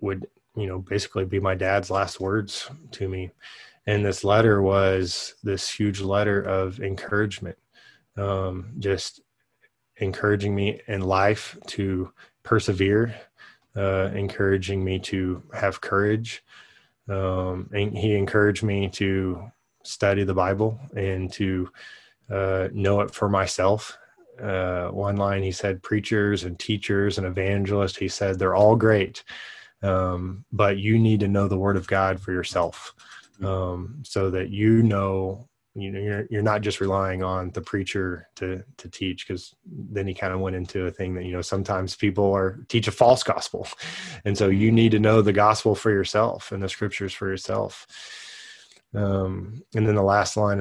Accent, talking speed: American, 160 wpm